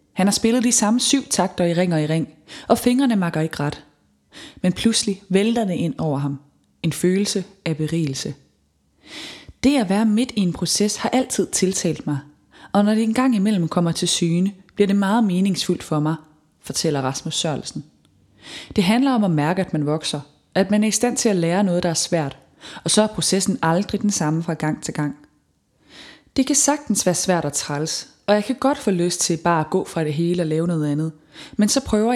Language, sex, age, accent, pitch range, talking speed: Danish, female, 20-39, native, 160-215 Hz, 215 wpm